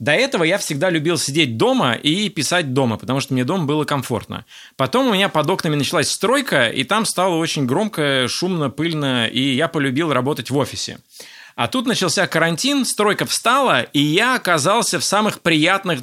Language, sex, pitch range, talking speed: Russian, male, 135-190 Hz, 180 wpm